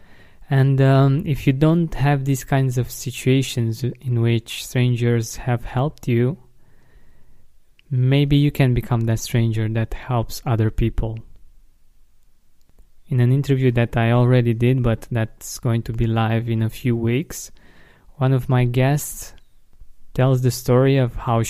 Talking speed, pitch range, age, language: 145 wpm, 115-130 Hz, 20-39, English